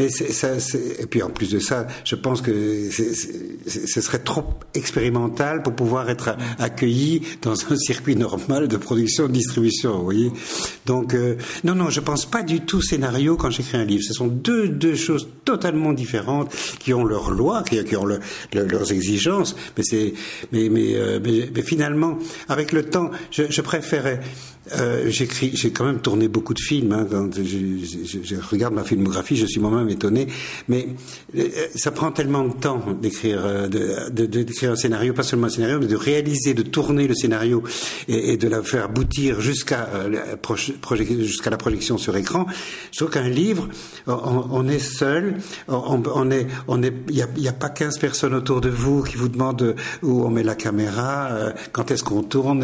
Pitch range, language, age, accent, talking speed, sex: 115-145 Hz, French, 60-79, French, 195 wpm, male